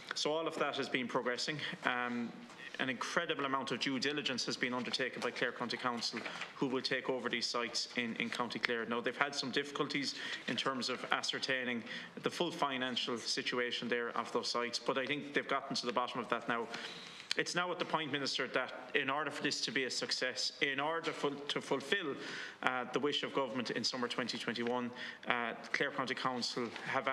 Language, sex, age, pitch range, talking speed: English, male, 30-49, 120-140 Hz, 205 wpm